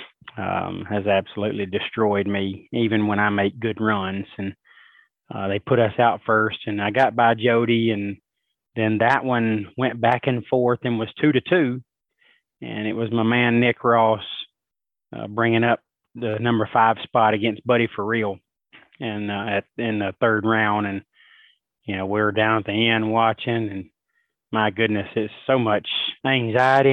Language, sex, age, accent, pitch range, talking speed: English, male, 20-39, American, 105-120 Hz, 170 wpm